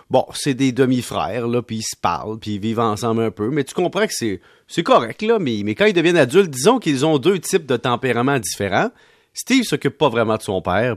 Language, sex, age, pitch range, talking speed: French, male, 40-59, 110-170 Hz, 245 wpm